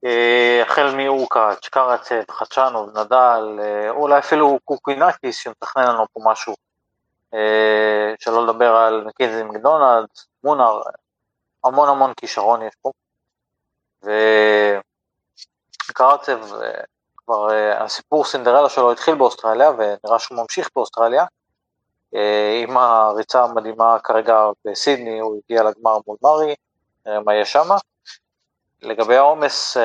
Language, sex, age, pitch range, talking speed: Hebrew, male, 30-49, 105-130 Hz, 100 wpm